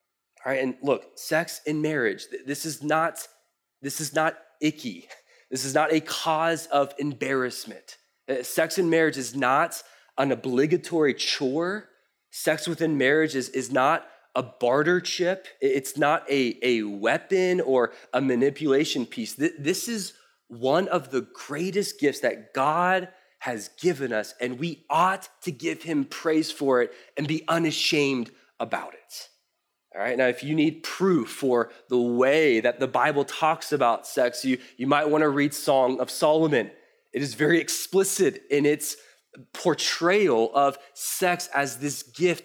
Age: 20-39